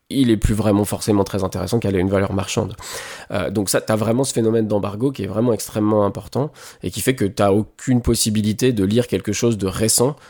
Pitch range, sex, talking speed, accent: 100-120 Hz, male, 235 wpm, French